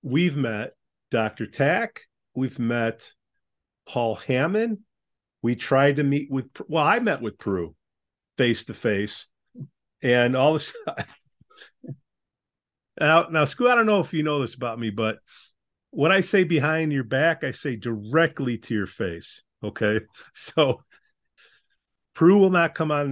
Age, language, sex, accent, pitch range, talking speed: 40-59, English, male, American, 130-180 Hz, 145 wpm